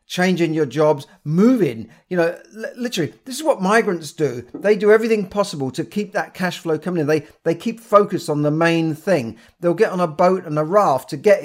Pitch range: 155-215 Hz